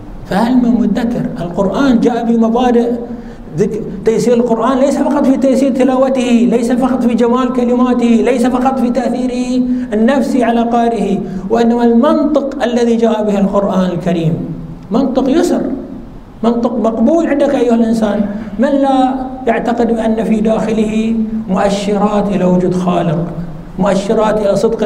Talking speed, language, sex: 125 wpm, Arabic, male